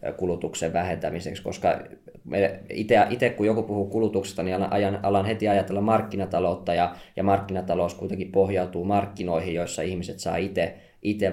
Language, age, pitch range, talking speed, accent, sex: Finnish, 20-39, 90-100 Hz, 125 wpm, native, male